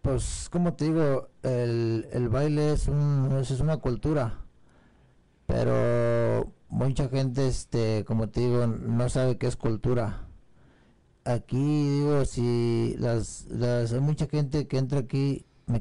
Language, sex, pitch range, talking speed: Spanish, male, 120-140 Hz, 135 wpm